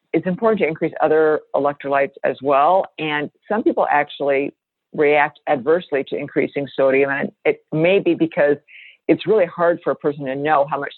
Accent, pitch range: American, 140-160 Hz